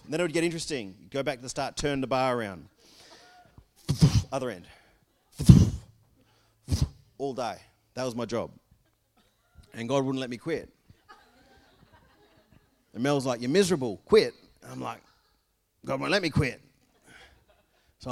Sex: male